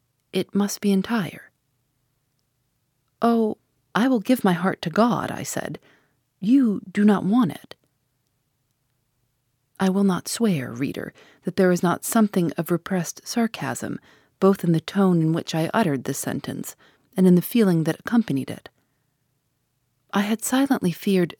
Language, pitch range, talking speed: English, 150-205 Hz, 150 wpm